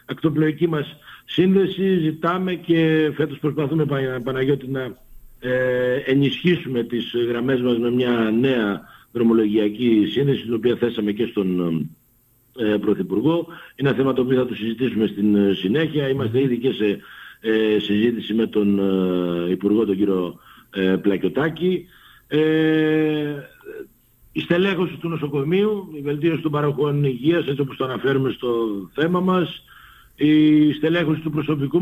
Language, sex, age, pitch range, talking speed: Greek, male, 50-69, 120-155 Hz, 125 wpm